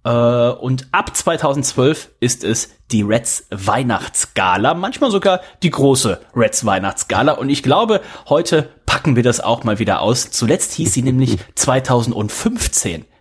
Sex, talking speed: male, 135 wpm